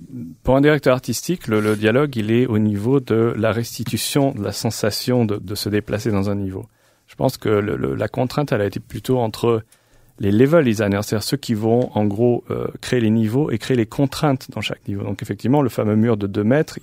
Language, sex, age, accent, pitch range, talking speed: French, male, 40-59, French, 105-125 Hz, 220 wpm